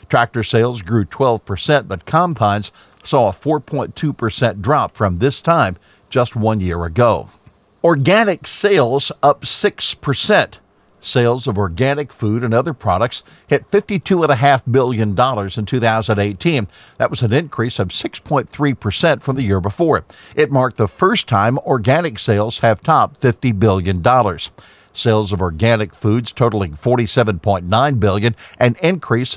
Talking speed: 130 wpm